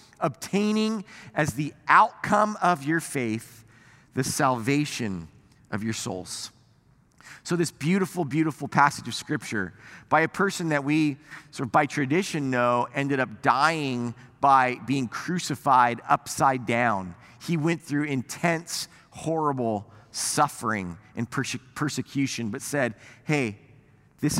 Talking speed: 120 wpm